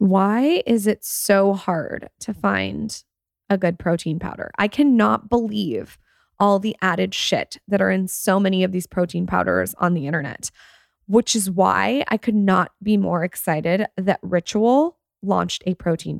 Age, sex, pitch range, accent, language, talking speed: 20-39, female, 185-220 Hz, American, English, 165 wpm